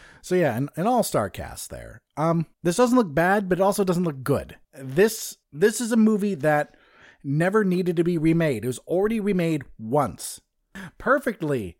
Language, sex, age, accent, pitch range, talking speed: English, male, 30-49, American, 150-210 Hz, 180 wpm